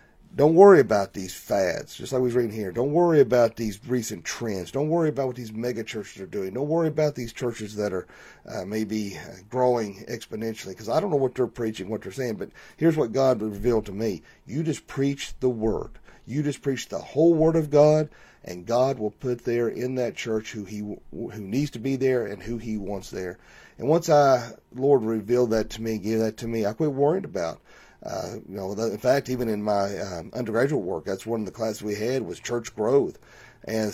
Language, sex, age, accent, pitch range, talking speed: English, male, 40-59, American, 110-140 Hz, 220 wpm